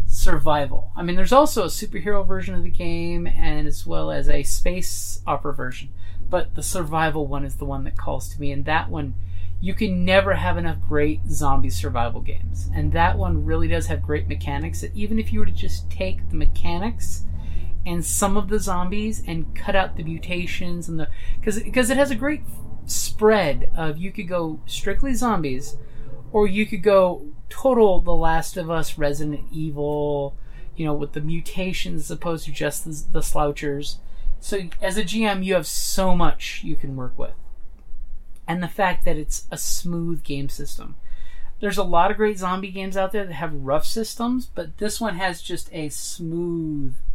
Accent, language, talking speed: American, English, 190 wpm